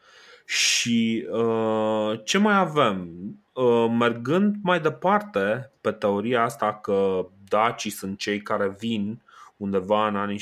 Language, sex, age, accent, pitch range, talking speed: Romanian, male, 20-39, native, 100-125 Hz, 120 wpm